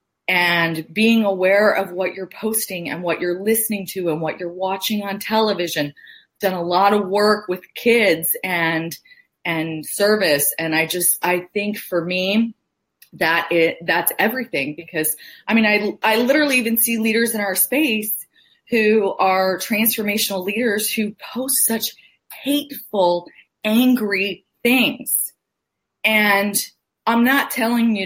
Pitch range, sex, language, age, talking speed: 180-225 Hz, female, English, 30-49, 145 wpm